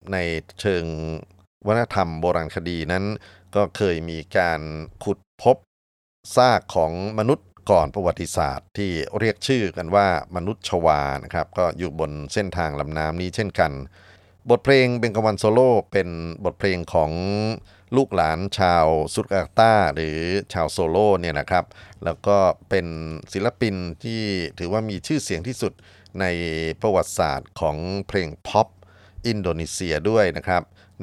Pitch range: 85-105 Hz